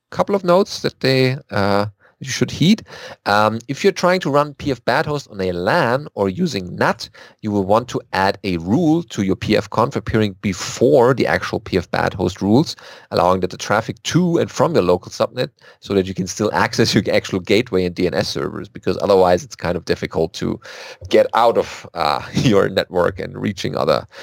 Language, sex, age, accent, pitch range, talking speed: English, male, 40-59, German, 95-130 Hz, 190 wpm